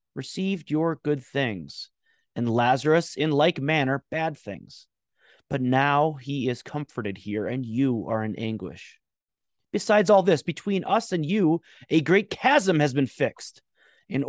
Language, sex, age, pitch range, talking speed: English, male, 30-49, 115-155 Hz, 150 wpm